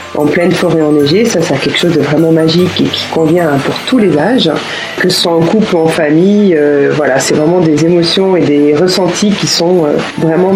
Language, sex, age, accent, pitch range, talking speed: French, female, 40-59, French, 160-205 Hz, 220 wpm